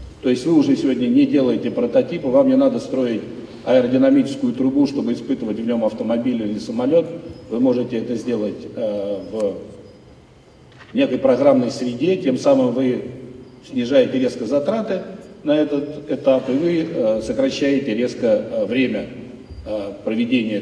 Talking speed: 130 wpm